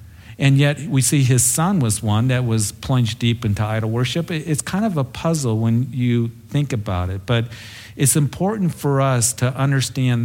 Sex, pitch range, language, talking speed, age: male, 110-140 Hz, English, 185 wpm, 50-69